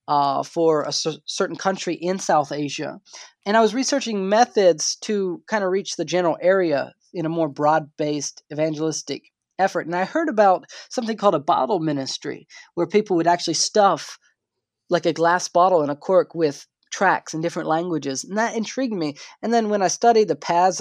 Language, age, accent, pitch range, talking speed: English, 20-39, American, 160-210 Hz, 180 wpm